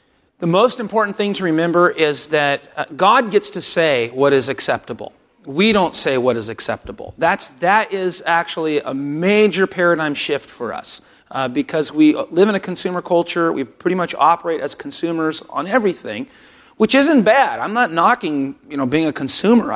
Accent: American